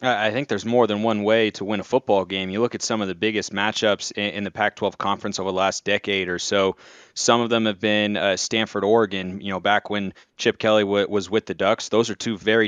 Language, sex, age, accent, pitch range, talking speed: English, male, 20-39, American, 100-110 Hz, 240 wpm